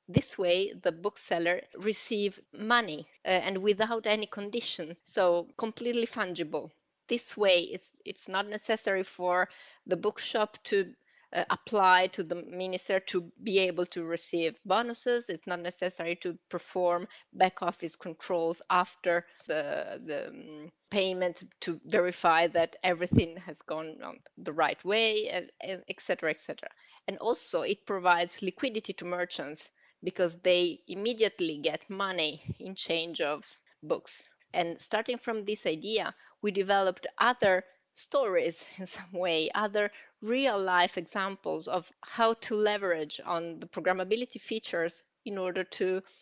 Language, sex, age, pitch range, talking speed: English, female, 20-39, 170-210 Hz, 135 wpm